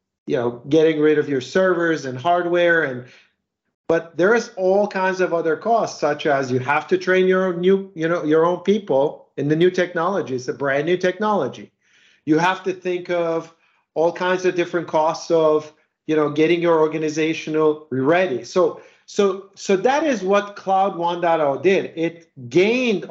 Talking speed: 180 wpm